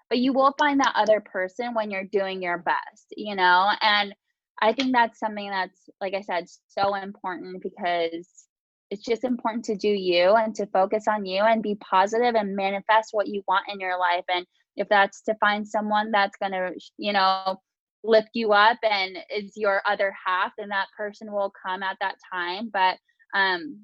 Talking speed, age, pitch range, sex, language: 190 wpm, 10-29, 190-220 Hz, female, English